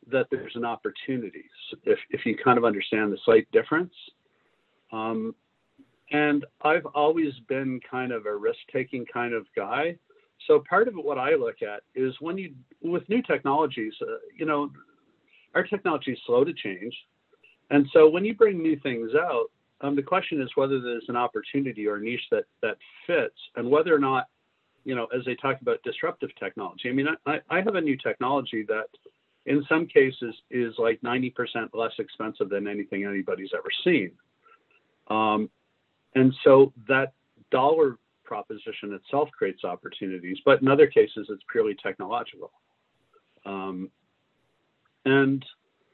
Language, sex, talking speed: English, male, 160 wpm